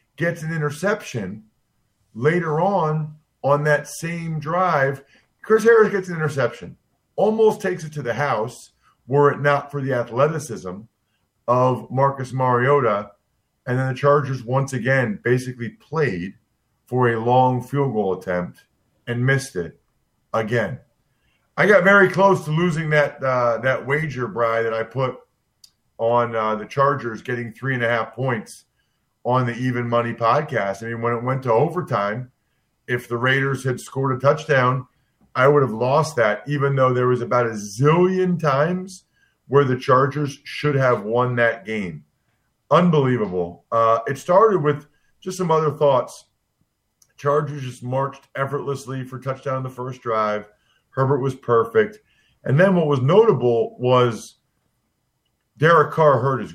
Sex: male